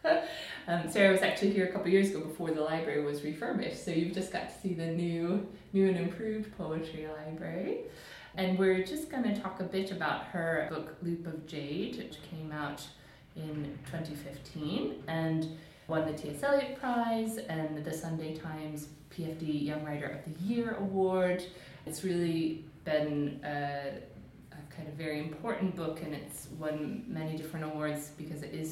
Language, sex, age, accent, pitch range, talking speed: English, female, 30-49, American, 150-185 Hz, 170 wpm